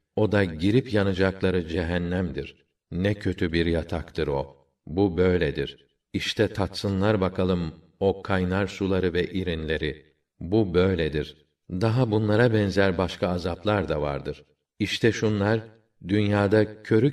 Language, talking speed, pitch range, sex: Turkish, 115 wpm, 85-105 Hz, male